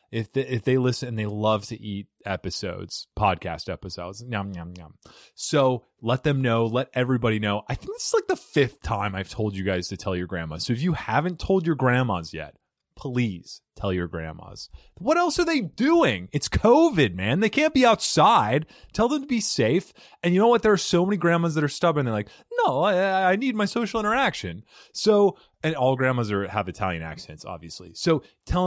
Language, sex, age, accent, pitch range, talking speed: English, male, 30-49, American, 95-135 Hz, 205 wpm